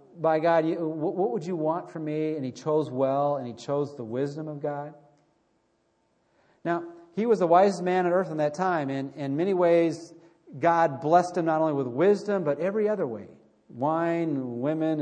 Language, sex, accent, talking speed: English, male, American, 185 wpm